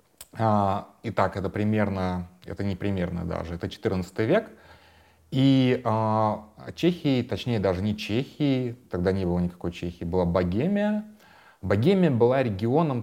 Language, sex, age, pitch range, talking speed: Russian, male, 30-49, 95-120 Hz, 120 wpm